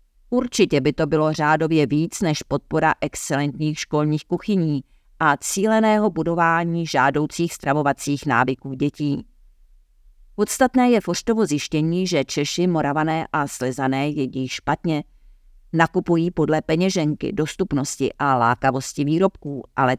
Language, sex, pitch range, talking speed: Czech, female, 135-170 Hz, 110 wpm